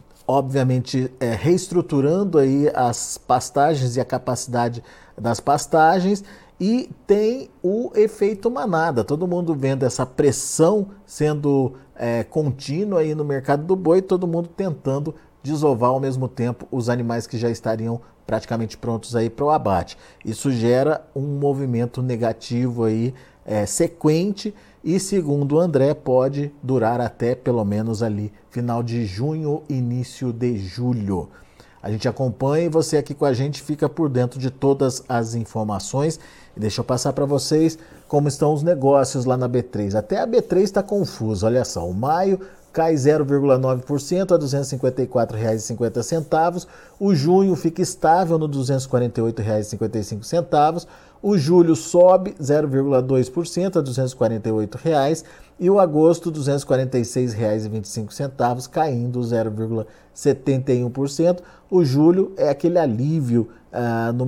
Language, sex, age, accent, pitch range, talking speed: Portuguese, male, 50-69, Brazilian, 120-160 Hz, 135 wpm